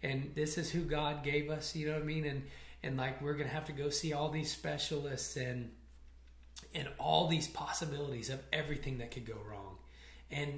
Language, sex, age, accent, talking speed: English, male, 20-39, American, 210 wpm